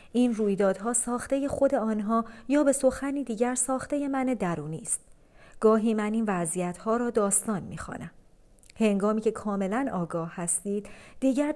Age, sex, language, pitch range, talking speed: 40-59, female, Persian, 195-245 Hz, 145 wpm